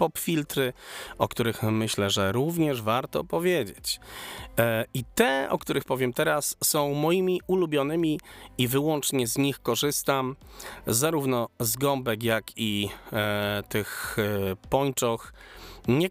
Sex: male